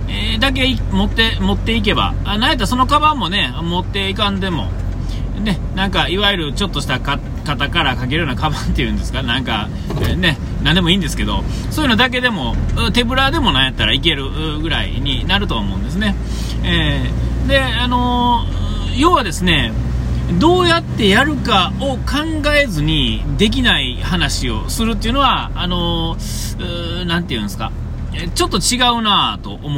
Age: 40-59